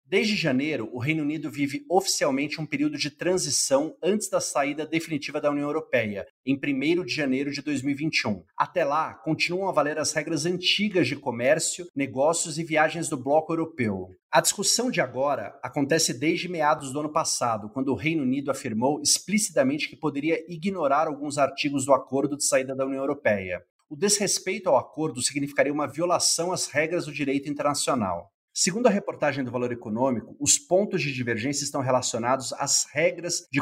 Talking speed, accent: 170 wpm, Brazilian